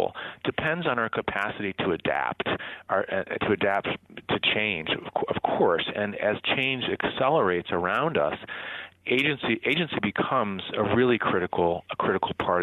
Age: 40-59